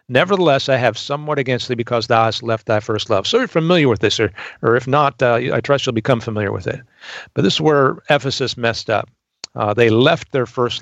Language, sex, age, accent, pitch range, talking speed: English, male, 50-69, American, 110-140 Hz, 235 wpm